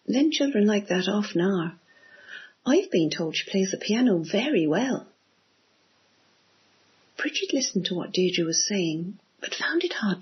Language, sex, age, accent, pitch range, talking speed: English, female, 50-69, British, 175-235 Hz, 155 wpm